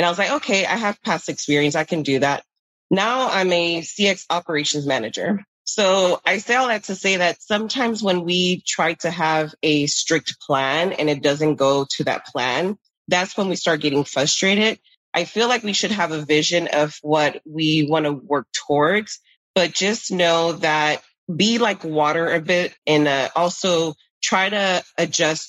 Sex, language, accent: female, English, American